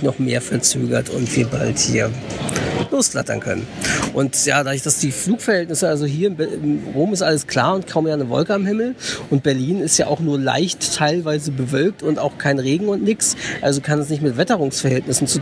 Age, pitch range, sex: 50-69, 140-175 Hz, male